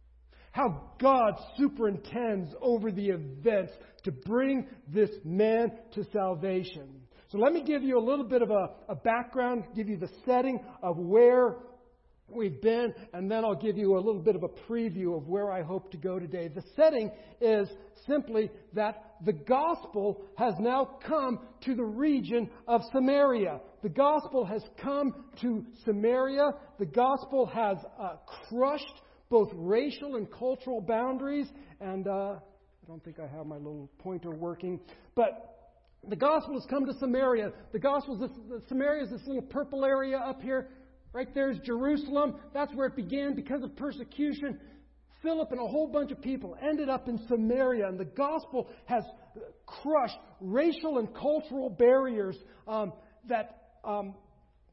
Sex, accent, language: male, American, English